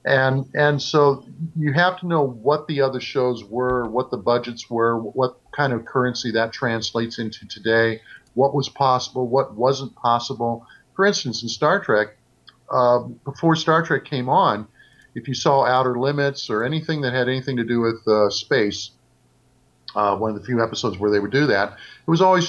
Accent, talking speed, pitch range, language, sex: American, 185 wpm, 120-145 Hz, English, male